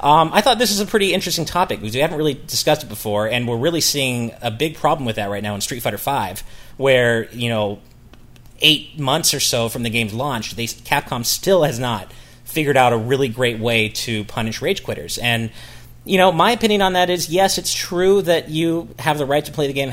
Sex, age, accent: male, 30-49, American